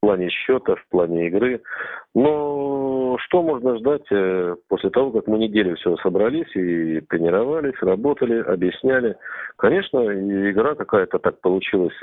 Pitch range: 85-130 Hz